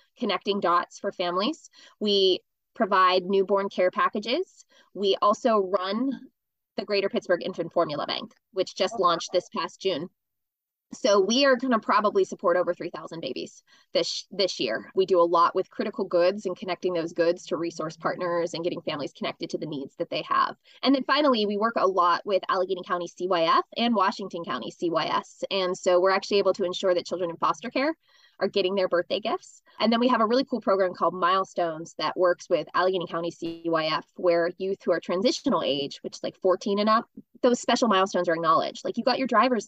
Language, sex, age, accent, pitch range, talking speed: English, female, 20-39, American, 180-275 Hz, 200 wpm